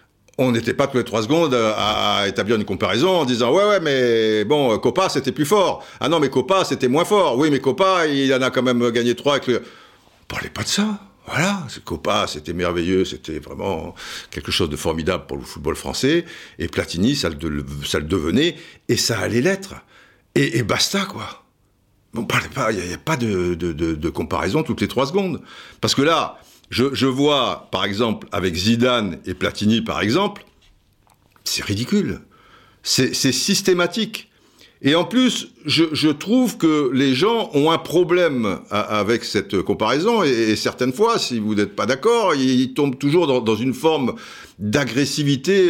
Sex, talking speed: male, 190 wpm